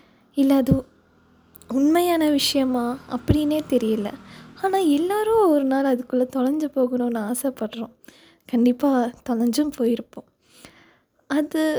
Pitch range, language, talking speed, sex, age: 240-300 Hz, English, 95 wpm, female, 20-39